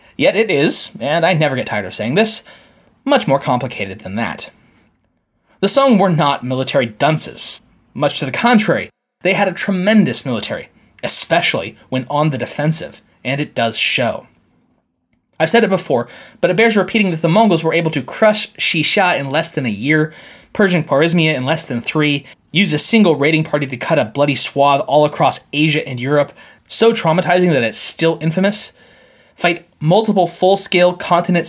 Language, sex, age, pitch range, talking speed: English, male, 20-39, 140-180 Hz, 175 wpm